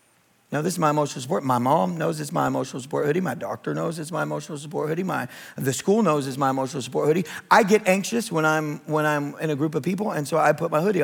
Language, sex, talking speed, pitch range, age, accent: English, male, 265 wpm, 125-160 Hz, 40-59, American